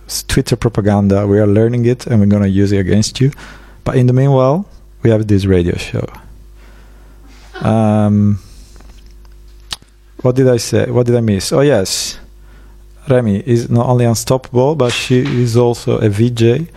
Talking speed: 160 wpm